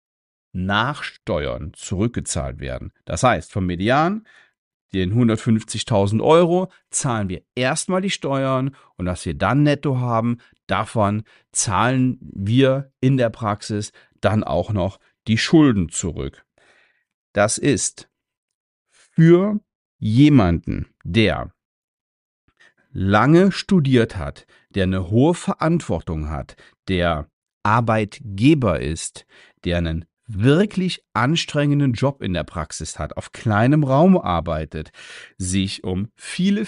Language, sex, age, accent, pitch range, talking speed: German, male, 40-59, German, 95-150 Hz, 110 wpm